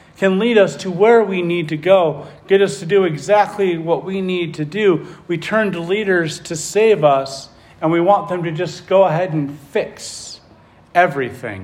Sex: male